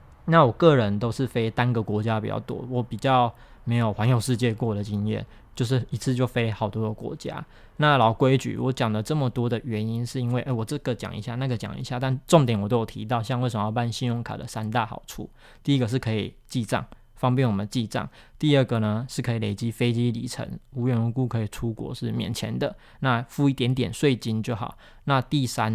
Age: 20-39